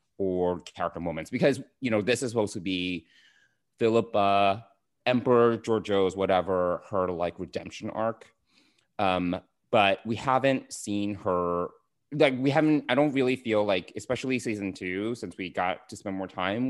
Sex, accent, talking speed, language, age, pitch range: male, American, 155 wpm, English, 30-49, 90-115 Hz